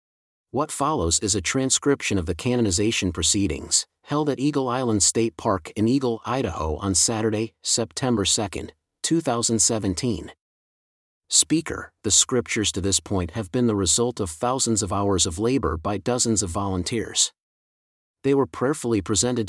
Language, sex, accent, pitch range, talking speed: English, male, American, 100-125 Hz, 145 wpm